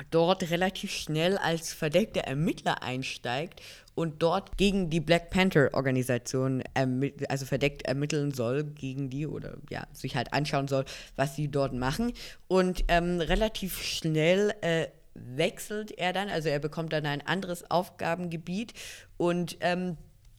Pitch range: 140-175 Hz